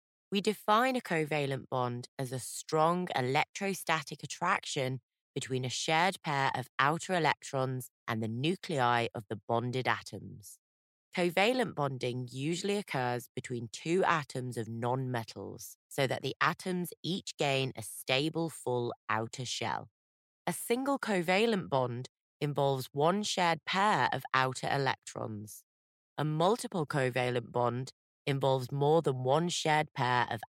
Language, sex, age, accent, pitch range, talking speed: English, female, 30-49, British, 120-170 Hz, 130 wpm